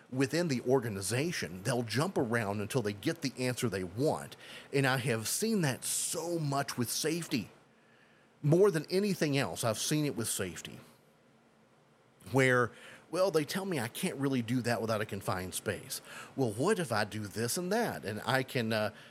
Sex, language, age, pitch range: male, English, 30-49, 110-150 Hz